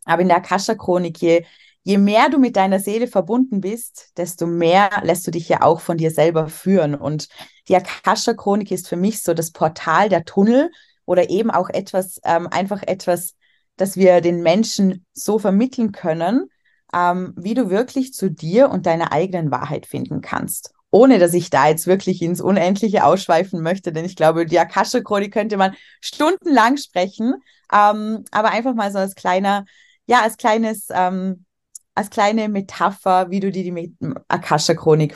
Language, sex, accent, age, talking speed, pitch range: German, female, German, 20-39, 170 wpm, 170-215 Hz